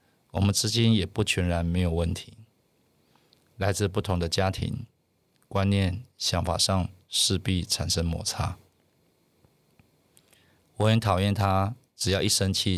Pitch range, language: 90-110 Hz, Chinese